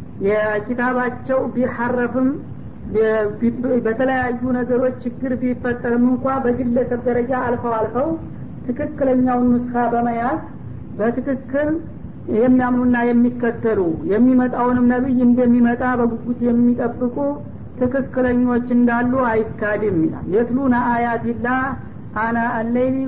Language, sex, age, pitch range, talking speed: Amharic, female, 60-79, 230-250 Hz, 80 wpm